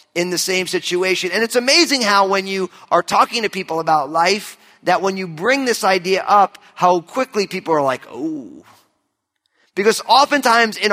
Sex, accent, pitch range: male, American, 180-235 Hz